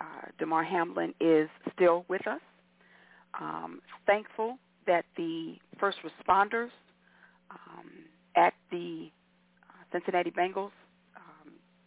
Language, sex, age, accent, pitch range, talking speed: English, female, 40-59, American, 165-210 Hz, 95 wpm